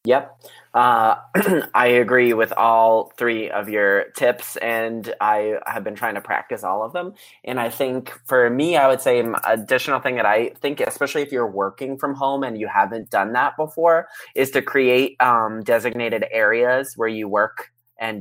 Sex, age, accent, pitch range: male, 20-39, American, 110-130 Hz